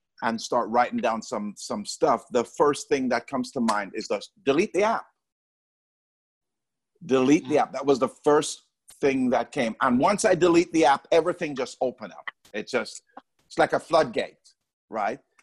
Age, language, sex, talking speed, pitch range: 50-69, English, male, 180 wpm, 120-170 Hz